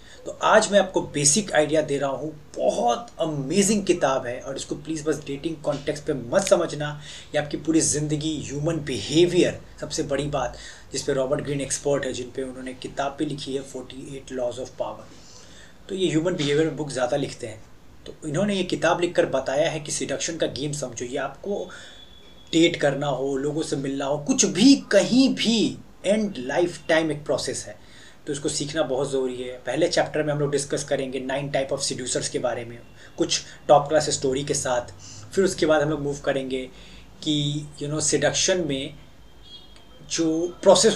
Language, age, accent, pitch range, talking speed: Hindi, 30-49, native, 135-155 Hz, 185 wpm